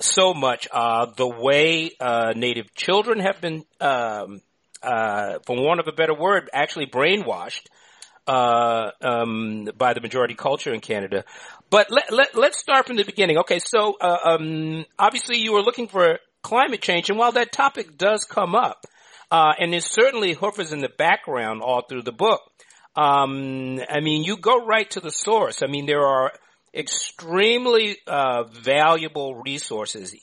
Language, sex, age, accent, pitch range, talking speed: English, male, 50-69, American, 130-205 Hz, 165 wpm